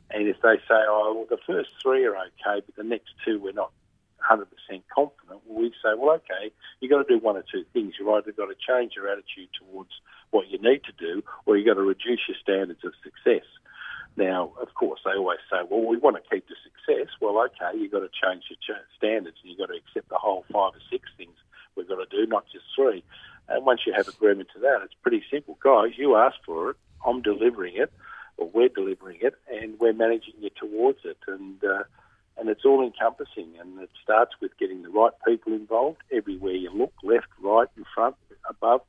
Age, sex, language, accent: 50-69, male, English, Australian